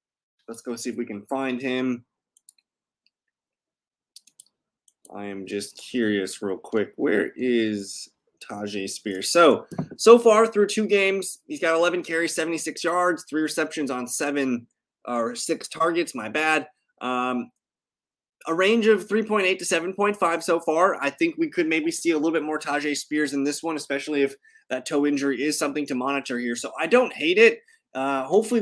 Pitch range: 135-185 Hz